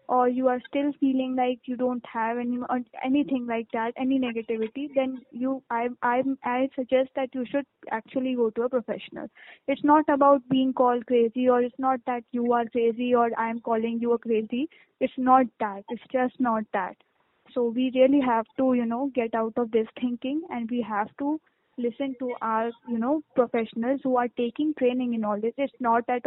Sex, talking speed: female, 200 wpm